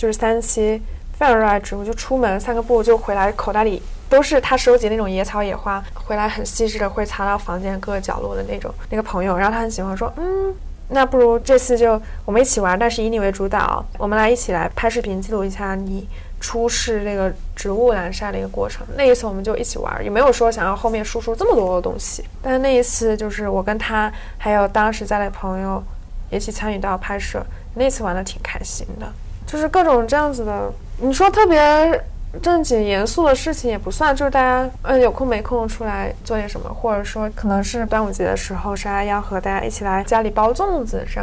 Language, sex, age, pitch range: Chinese, female, 20-39, 195-235 Hz